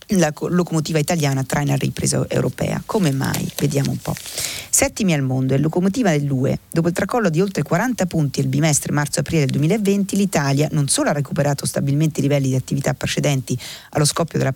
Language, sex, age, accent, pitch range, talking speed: Italian, female, 40-59, native, 130-165 Hz, 185 wpm